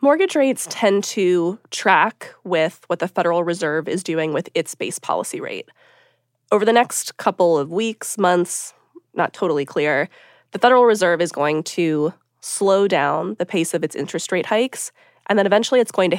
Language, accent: English, American